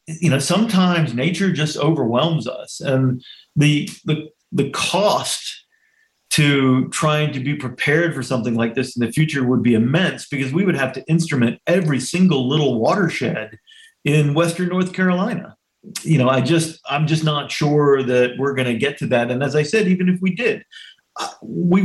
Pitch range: 125-165 Hz